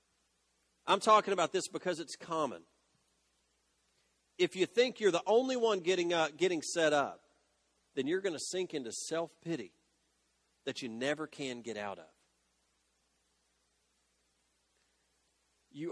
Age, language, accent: 40-59, English, American